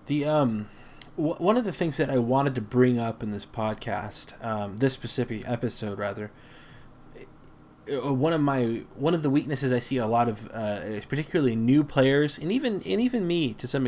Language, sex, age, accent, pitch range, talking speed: English, male, 20-39, American, 115-145 Hz, 190 wpm